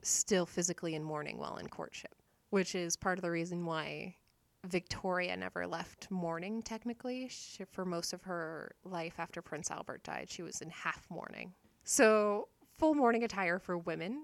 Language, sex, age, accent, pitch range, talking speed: English, female, 20-39, American, 175-210 Hz, 165 wpm